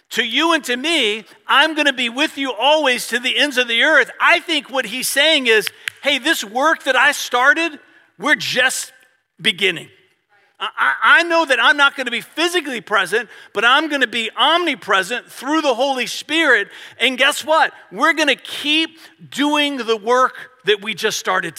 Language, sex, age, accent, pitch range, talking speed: English, male, 50-69, American, 185-285 Hz, 180 wpm